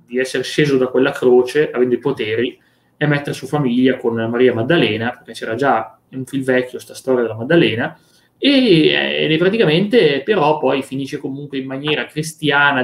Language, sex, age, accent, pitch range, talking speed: Italian, male, 20-39, native, 125-155 Hz, 175 wpm